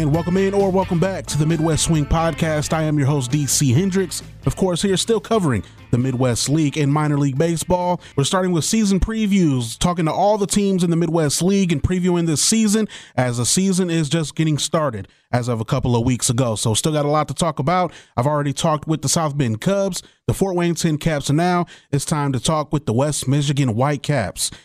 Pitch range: 140-175 Hz